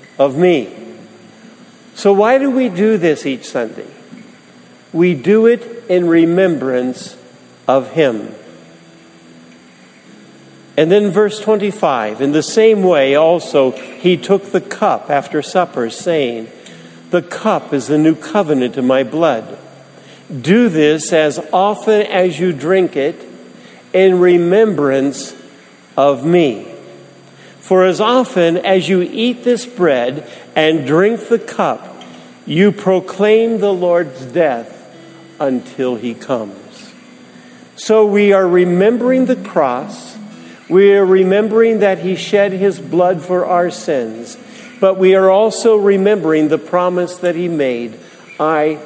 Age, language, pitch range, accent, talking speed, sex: 50-69, English, 135-200 Hz, American, 125 wpm, male